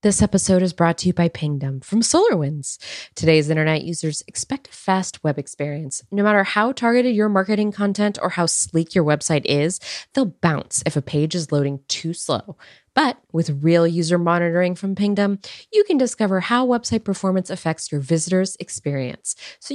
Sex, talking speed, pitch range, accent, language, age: female, 175 wpm, 150-215 Hz, American, English, 20-39